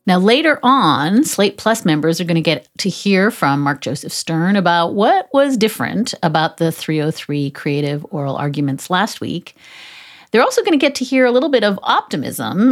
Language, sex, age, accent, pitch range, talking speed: English, female, 40-59, American, 160-240 Hz, 190 wpm